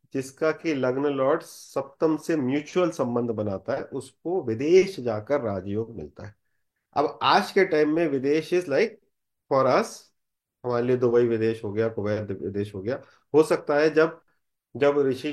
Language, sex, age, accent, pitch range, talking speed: Hindi, male, 30-49, native, 110-155 Hz, 165 wpm